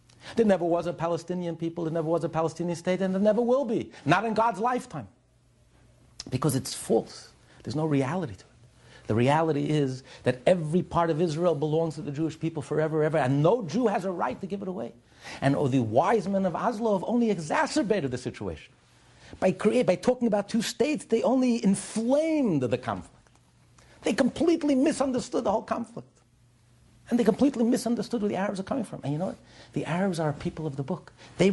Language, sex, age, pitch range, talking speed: English, male, 50-69, 155-235 Hz, 200 wpm